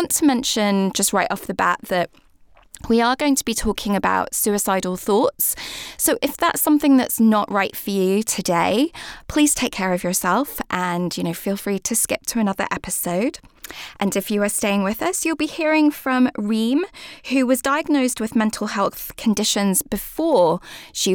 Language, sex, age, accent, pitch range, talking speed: English, female, 20-39, British, 190-255 Hz, 180 wpm